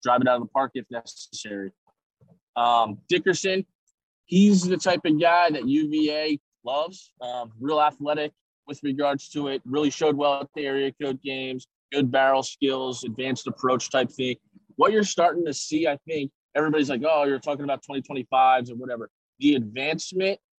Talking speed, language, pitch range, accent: 170 wpm, English, 125-150 Hz, American